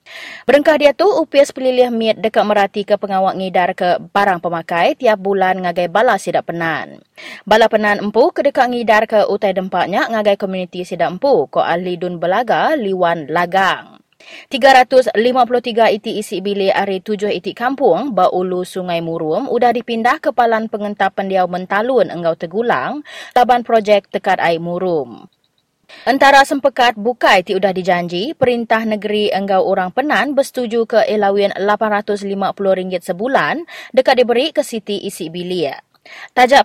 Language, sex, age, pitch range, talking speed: English, female, 20-39, 185-250 Hz, 145 wpm